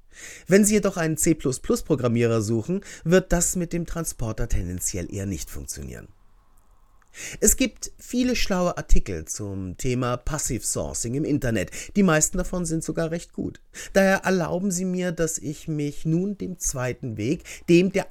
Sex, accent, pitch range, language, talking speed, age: male, German, 115-185 Hz, German, 150 wpm, 30-49